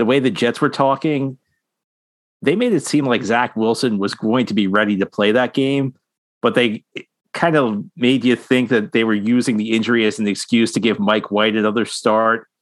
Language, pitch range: English, 105-120 Hz